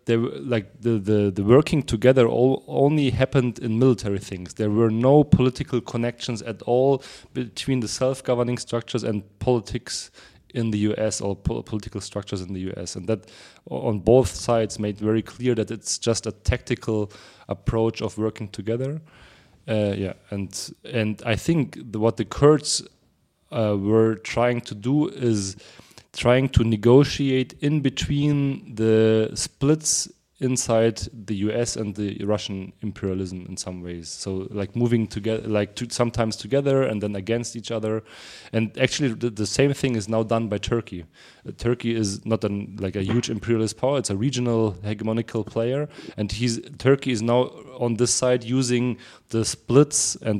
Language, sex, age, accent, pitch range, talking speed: English, male, 30-49, German, 105-125 Hz, 160 wpm